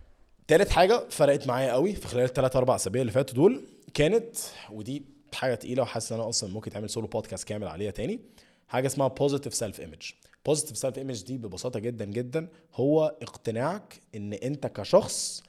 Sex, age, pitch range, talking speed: male, 20-39, 105-140 Hz, 170 wpm